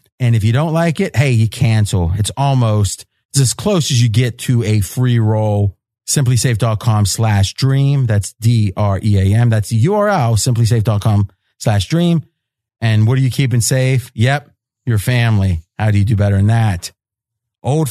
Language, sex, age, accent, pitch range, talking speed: English, male, 30-49, American, 110-135 Hz, 165 wpm